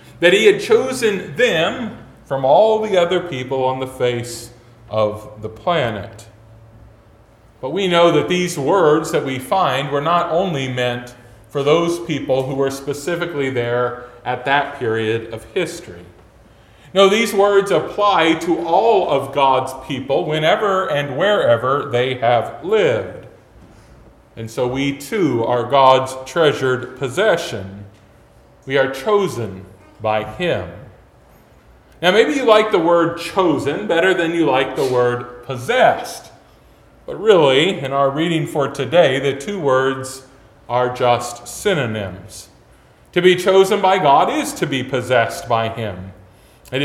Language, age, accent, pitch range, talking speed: English, 40-59, American, 120-165 Hz, 140 wpm